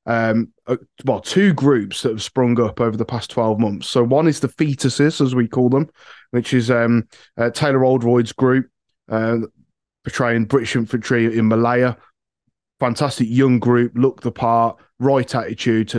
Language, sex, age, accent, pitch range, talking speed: English, male, 20-39, British, 115-135 Hz, 170 wpm